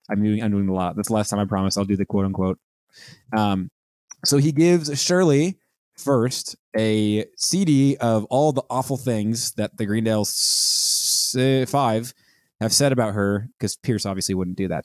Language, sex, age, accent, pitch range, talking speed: English, male, 20-39, American, 110-135 Hz, 175 wpm